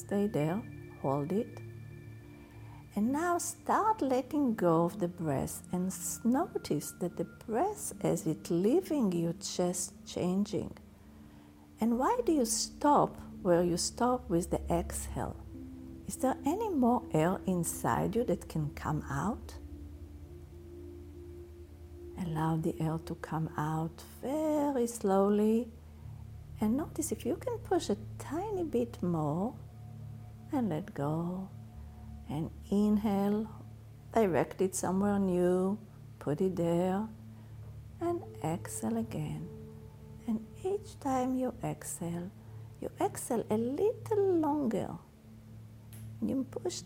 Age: 50-69